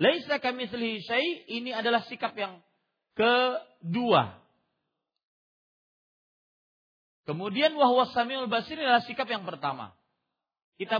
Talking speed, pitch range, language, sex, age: 95 wpm, 190-285 Hz, Malay, male, 40-59